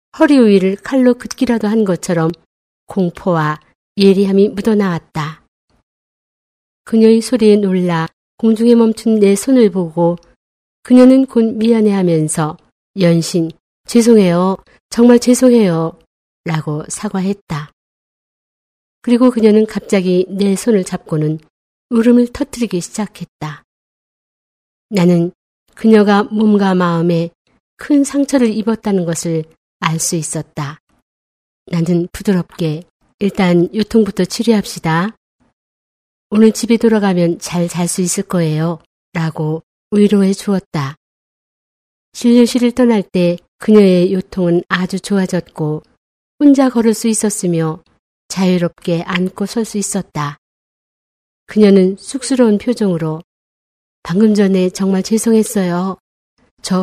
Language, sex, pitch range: Korean, female, 170-220 Hz